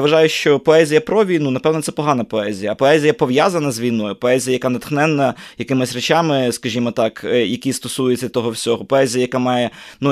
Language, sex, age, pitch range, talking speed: English, male, 20-39, 115-135 Hz, 180 wpm